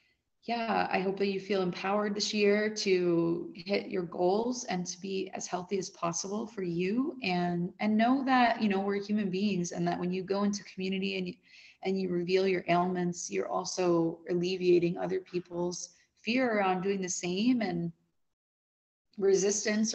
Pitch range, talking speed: 175-200 Hz, 170 wpm